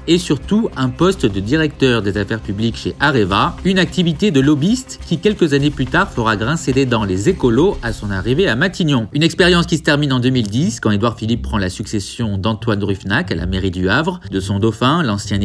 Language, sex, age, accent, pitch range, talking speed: French, male, 40-59, French, 100-140 Hz, 215 wpm